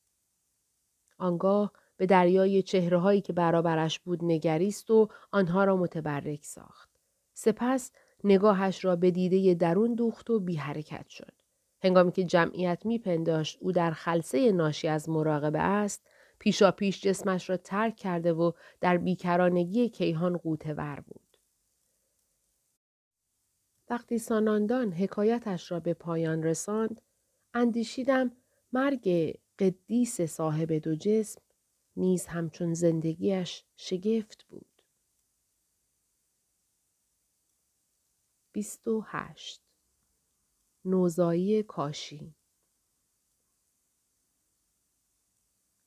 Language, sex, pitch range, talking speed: Persian, female, 160-215 Hz, 90 wpm